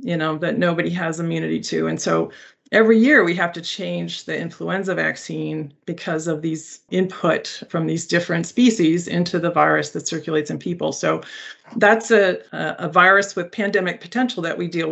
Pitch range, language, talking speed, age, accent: 160-180 Hz, English, 175 wpm, 40-59, American